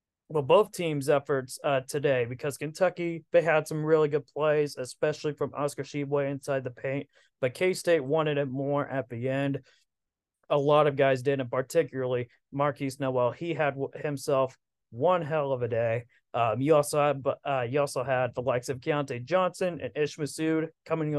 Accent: American